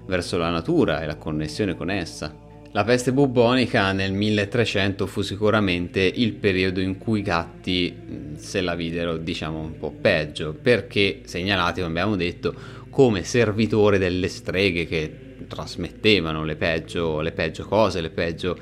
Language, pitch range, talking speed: Italian, 85-130 Hz, 150 wpm